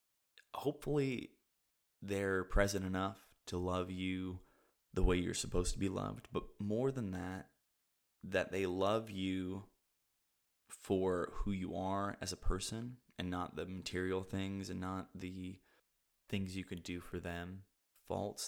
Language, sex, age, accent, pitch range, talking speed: English, male, 20-39, American, 90-100 Hz, 145 wpm